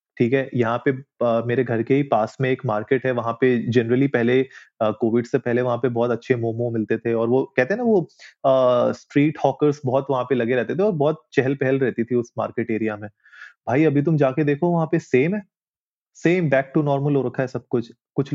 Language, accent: Hindi, native